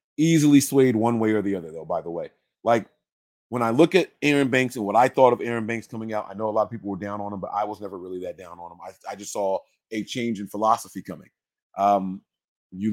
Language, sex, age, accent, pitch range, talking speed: English, male, 30-49, American, 105-130 Hz, 265 wpm